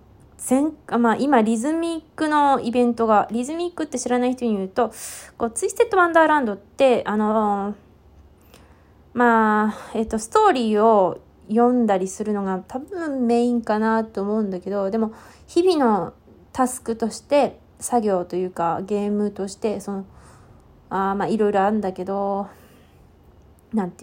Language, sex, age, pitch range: Japanese, female, 20-39, 195-270 Hz